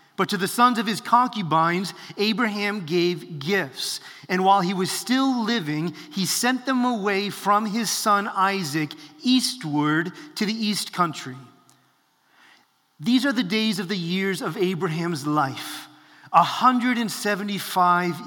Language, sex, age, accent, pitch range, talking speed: English, male, 30-49, American, 165-210 Hz, 130 wpm